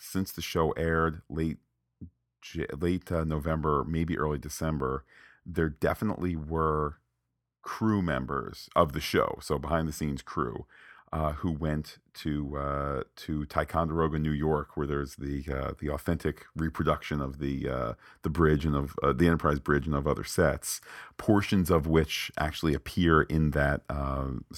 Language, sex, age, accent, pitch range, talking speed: English, male, 40-59, American, 70-85 Hz, 155 wpm